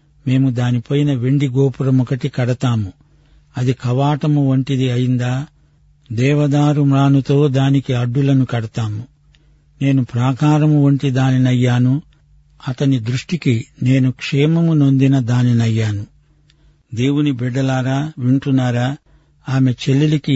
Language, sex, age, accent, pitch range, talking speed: Telugu, male, 50-69, native, 130-145 Hz, 85 wpm